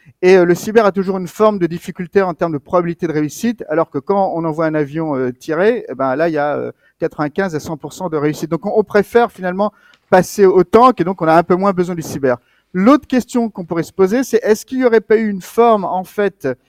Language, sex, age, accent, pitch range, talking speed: French, male, 50-69, French, 155-215 Hz, 240 wpm